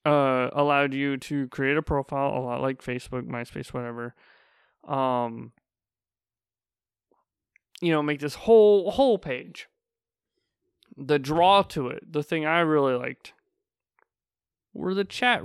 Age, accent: 20-39, American